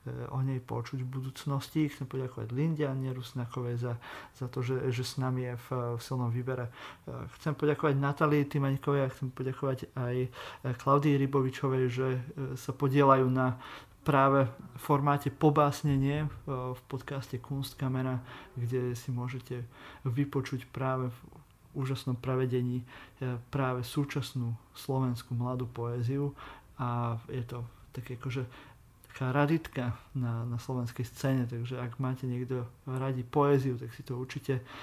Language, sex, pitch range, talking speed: Slovak, male, 125-140 Hz, 130 wpm